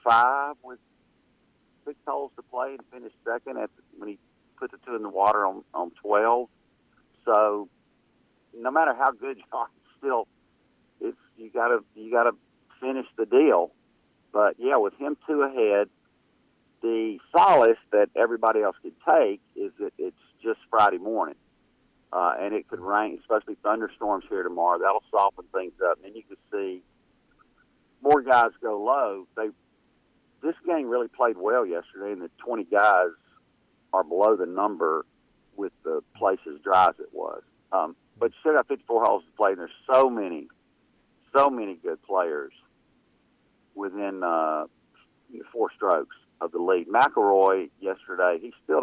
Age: 50-69